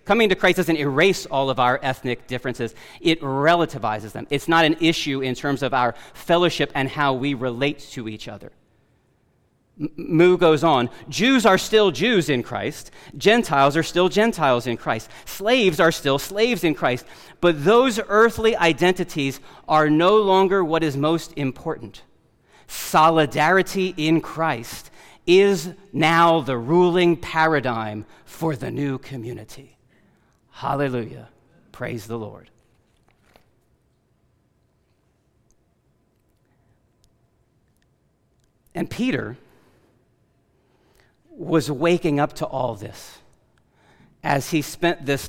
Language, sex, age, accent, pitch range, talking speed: English, male, 40-59, American, 125-170 Hz, 120 wpm